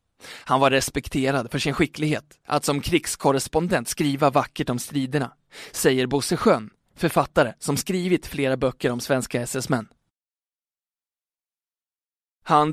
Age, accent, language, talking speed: 20-39, native, Swedish, 120 wpm